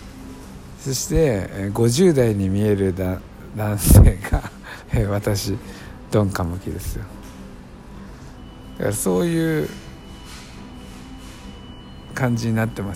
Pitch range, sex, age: 90-115 Hz, male, 60-79